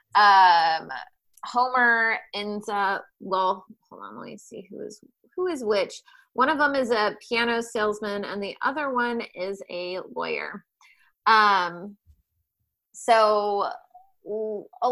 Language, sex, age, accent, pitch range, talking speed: English, female, 20-39, American, 190-230 Hz, 130 wpm